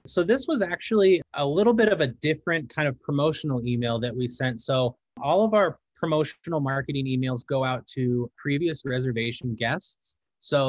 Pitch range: 125-155 Hz